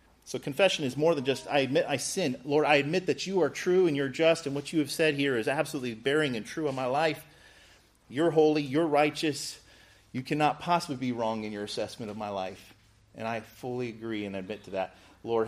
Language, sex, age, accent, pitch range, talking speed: English, male, 40-59, American, 105-155 Hz, 225 wpm